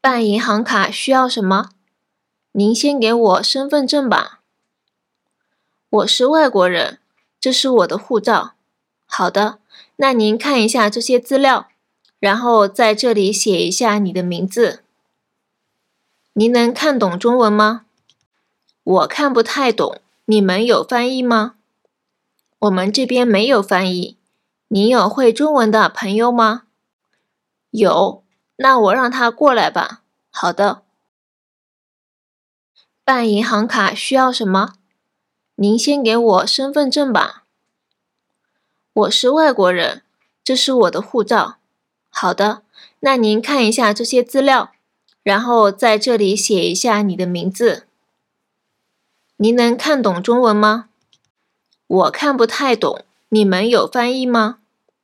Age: 20-39